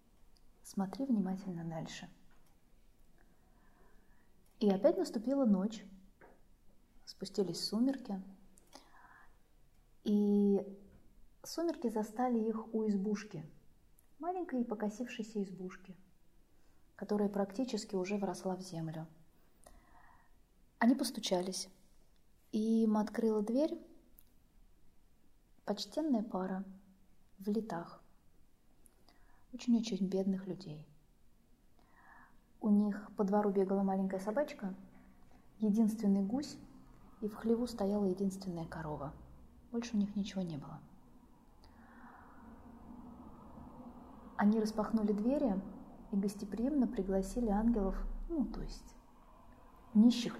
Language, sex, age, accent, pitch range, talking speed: Russian, female, 20-39, native, 190-235 Hz, 80 wpm